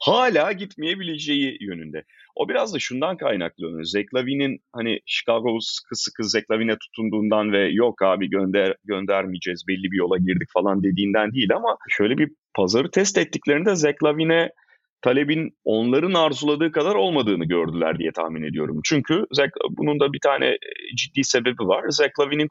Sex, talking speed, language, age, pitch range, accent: male, 140 wpm, Turkish, 30-49, 100-150 Hz, native